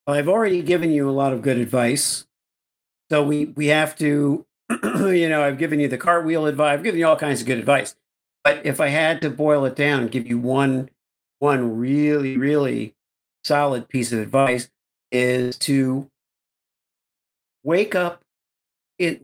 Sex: male